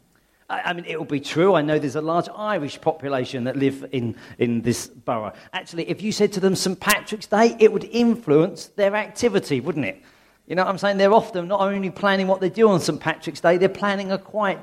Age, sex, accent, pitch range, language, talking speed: 40-59, male, British, 150-205 Hz, English, 230 wpm